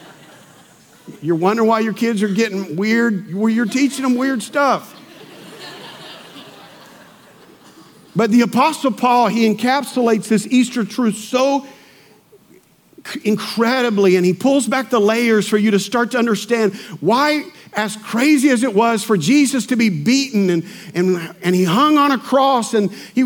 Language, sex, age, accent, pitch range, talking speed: English, male, 50-69, American, 185-245 Hz, 145 wpm